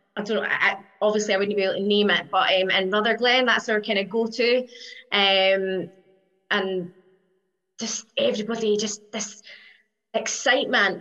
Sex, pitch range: female, 205-245 Hz